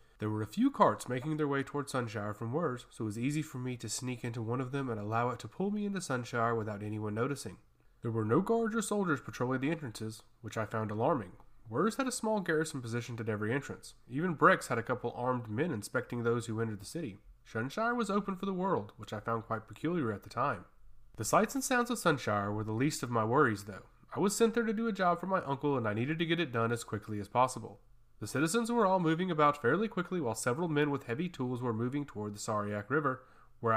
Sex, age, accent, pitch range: male, 30-49, American, 110-170 Hz